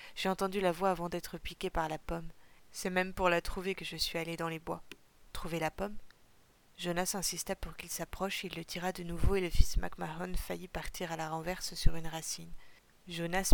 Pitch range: 165-185 Hz